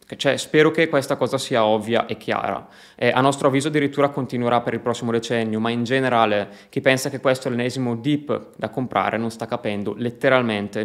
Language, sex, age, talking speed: Italian, male, 20-39, 195 wpm